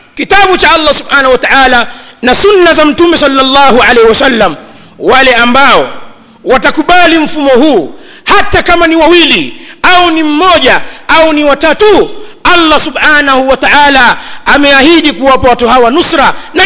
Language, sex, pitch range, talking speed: Swahili, male, 265-335 Hz, 135 wpm